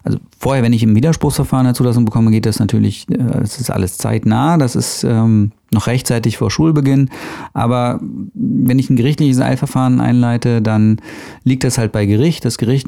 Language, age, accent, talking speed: German, 40-59, German, 180 wpm